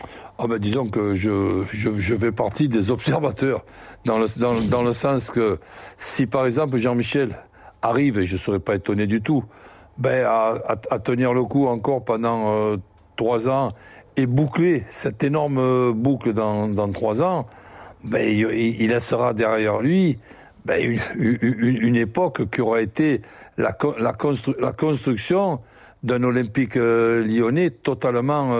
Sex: male